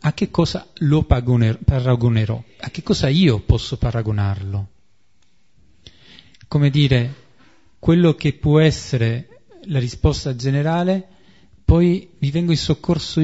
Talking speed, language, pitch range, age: 115 wpm, Italian, 115-155 Hz, 40-59